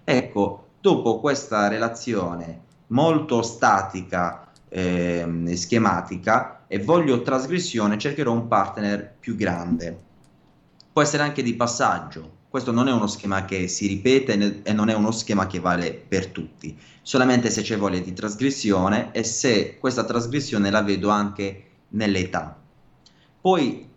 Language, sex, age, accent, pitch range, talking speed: Italian, male, 20-39, native, 95-120 Hz, 135 wpm